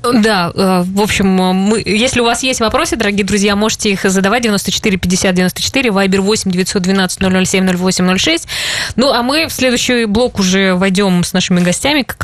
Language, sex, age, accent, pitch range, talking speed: Russian, female, 20-39, native, 180-215 Hz, 140 wpm